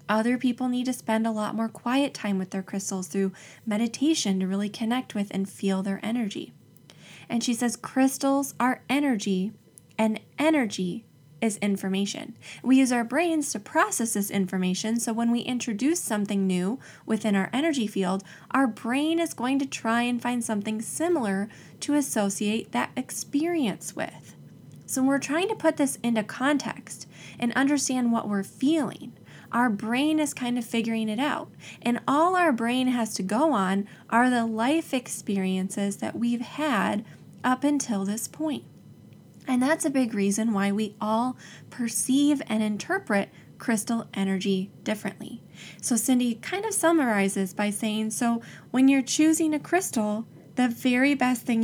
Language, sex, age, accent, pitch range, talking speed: English, female, 20-39, American, 205-265 Hz, 160 wpm